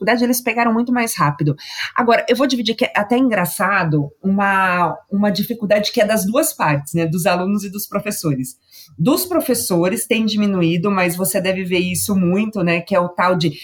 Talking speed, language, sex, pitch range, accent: 195 wpm, Portuguese, female, 180-255 Hz, Brazilian